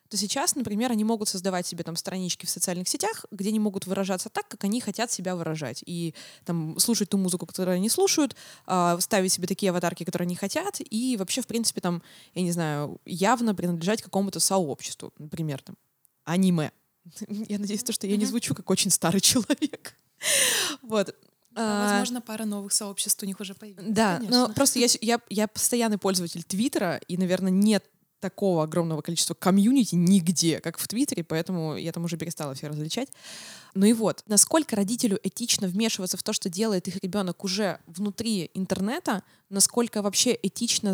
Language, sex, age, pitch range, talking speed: Russian, female, 20-39, 175-215 Hz, 165 wpm